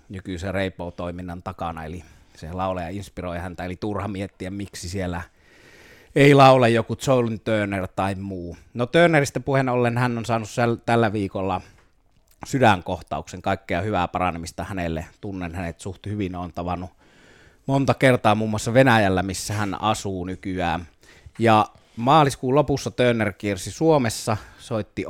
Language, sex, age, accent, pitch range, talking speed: Finnish, male, 30-49, native, 90-115 Hz, 135 wpm